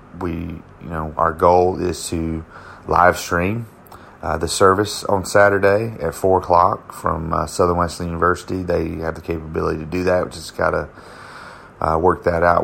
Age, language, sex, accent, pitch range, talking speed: 30-49, English, male, American, 80-90 Hz, 165 wpm